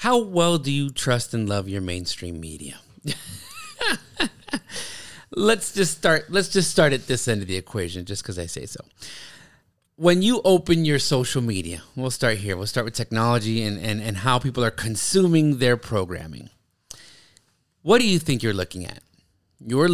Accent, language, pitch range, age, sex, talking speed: American, English, 110-160 Hz, 30-49, male, 170 wpm